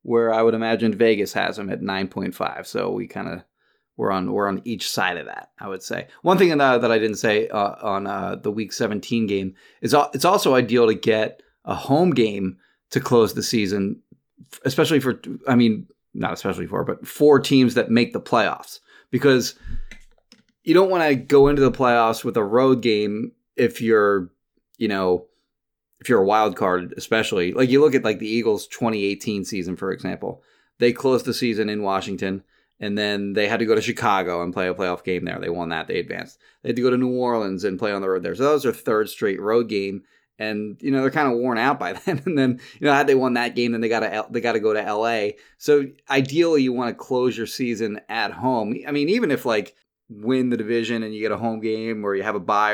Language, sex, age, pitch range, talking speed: English, male, 30-49, 105-125 Hz, 235 wpm